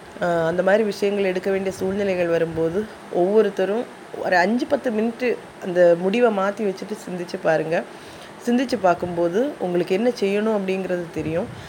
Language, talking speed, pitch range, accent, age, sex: Tamil, 130 wpm, 175-210 Hz, native, 20-39, female